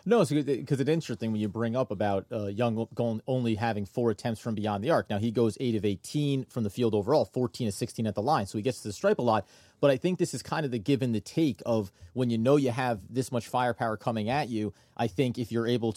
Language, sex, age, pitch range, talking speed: English, male, 30-49, 110-130 Hz, 275 wpm